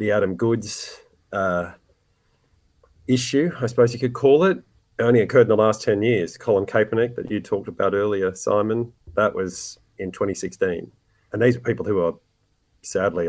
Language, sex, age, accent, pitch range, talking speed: English, male, 30-49, Australian, 95-115 Hz, 165 wpm